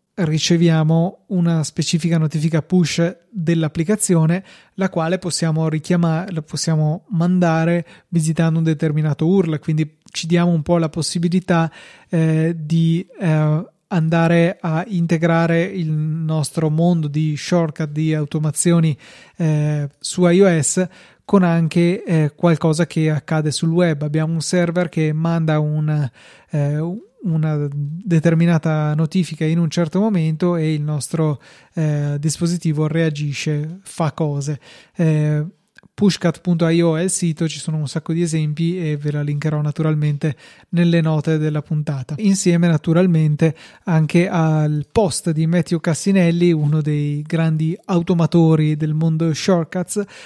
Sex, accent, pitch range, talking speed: male, native, 155-175 Hz, 125 wpm